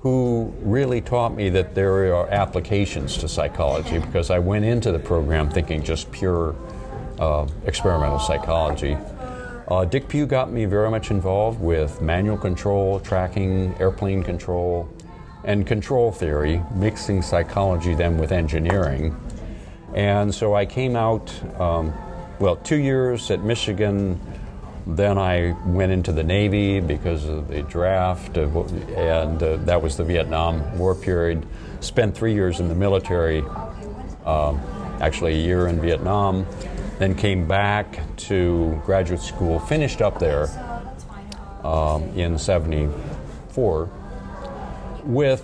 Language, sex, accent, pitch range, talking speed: English, male, American, 80-100 Hz, 130 wpm